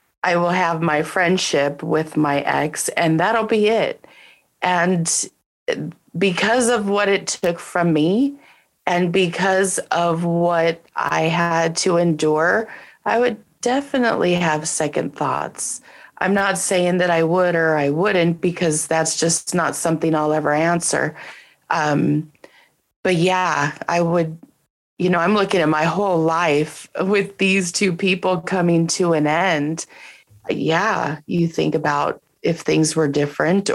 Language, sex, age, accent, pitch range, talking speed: English, female, 30-49, American, 160-195 Hz, 140 wpm